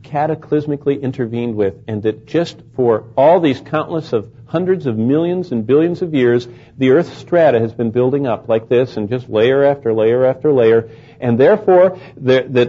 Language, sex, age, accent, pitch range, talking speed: English, male, 50-69, American, 120-170 Hz, 175 wpm